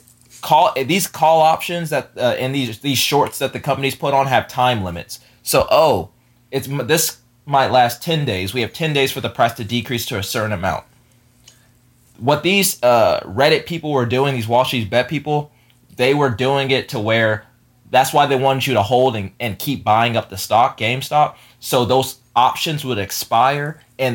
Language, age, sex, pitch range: English, 20-39, male, 110-135 Hz